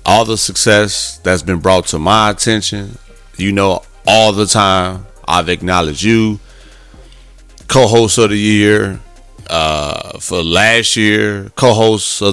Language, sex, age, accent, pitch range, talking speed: English, male, 30-49, American, 90-120 Hz, 130 wpm